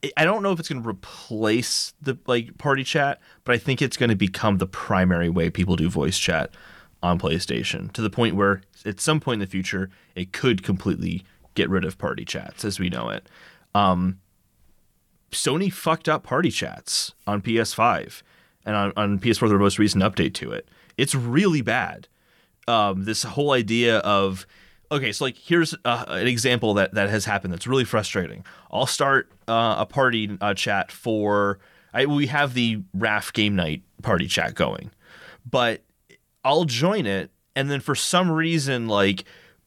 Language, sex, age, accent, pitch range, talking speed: English, male, 30-49, American, 100-130 Hz, 175 wpm